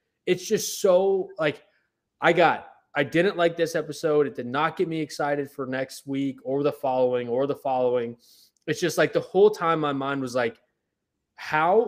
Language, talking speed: English, 185 wpm